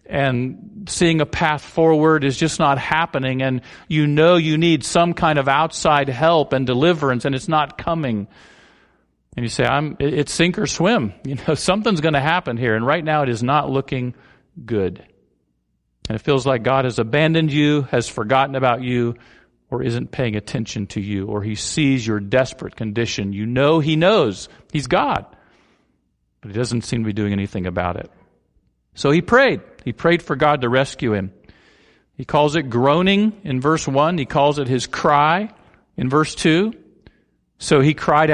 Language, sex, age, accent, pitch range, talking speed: English, male, 50-69, American, 110-155 Hz, 180 wpm